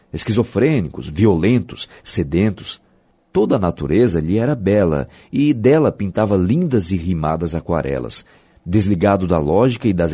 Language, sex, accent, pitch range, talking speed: Portuguese, male, Brazilian, 85-115 Hz, 125 wpm